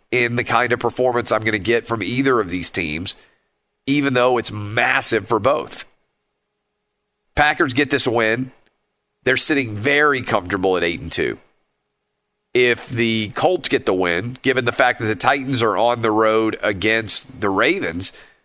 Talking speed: 165 wpm